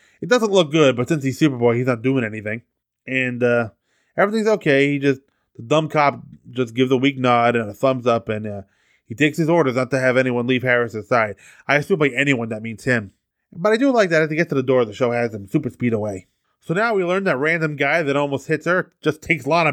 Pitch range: 120-165 Hz